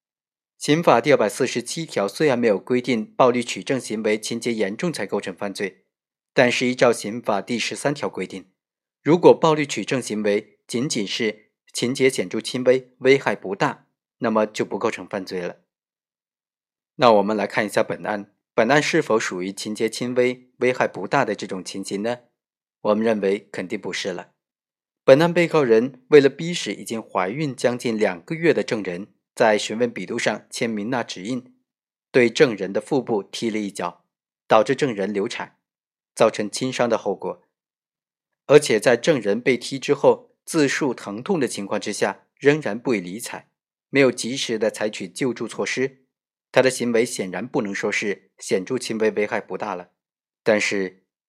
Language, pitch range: Chinese, 105-130 Hz